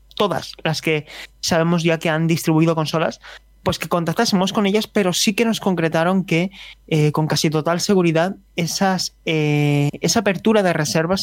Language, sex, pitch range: Spanish, male, 160-190 Hz